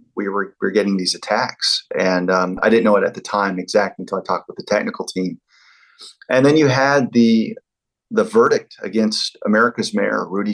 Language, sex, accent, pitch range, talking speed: English, male, American, 100-145 Hz, 200 wpm